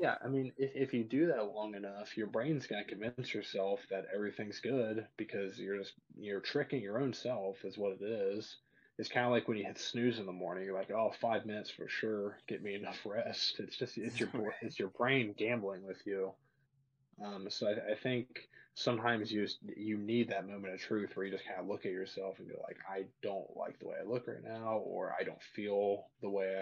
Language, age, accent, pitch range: English, 20-39, American, 100-120 Hz